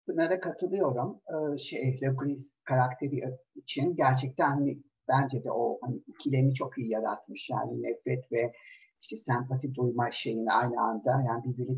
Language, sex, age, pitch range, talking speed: Turkish, male, 50-69, 130-165 Hz, 145 wpm